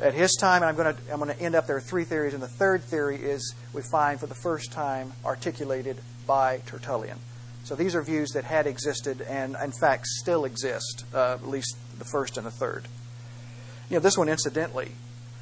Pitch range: 120-150 Hz